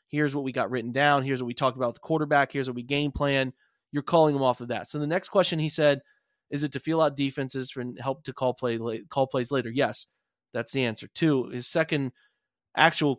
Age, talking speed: 30-49, 240 wpm